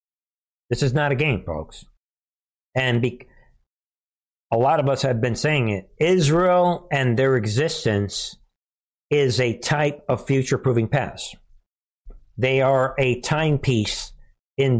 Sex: male